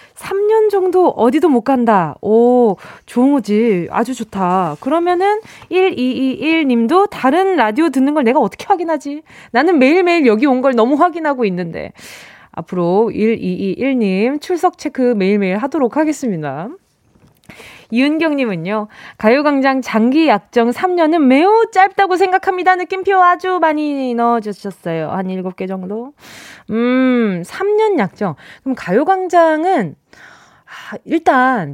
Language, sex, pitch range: Korean, female, 210-330 Hz